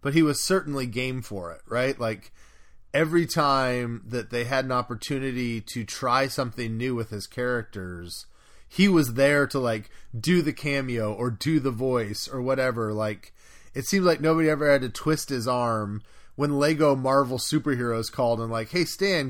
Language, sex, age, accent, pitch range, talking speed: English, male, 30-49, American, 115-145 Hz, 175 wpm